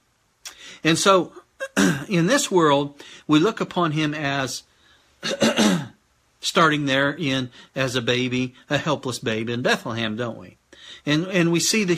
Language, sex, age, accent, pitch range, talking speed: English, male, 50-69, American, 140-180 Hz, 140 wpm